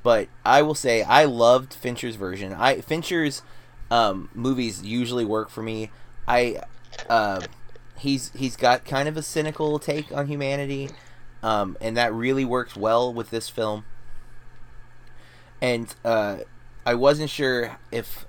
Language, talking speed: English, 140 wpm